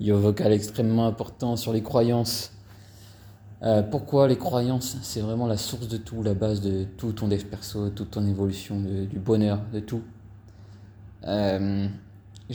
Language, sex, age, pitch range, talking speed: French, male, 20-39, 100-120 Hz, 170 wpm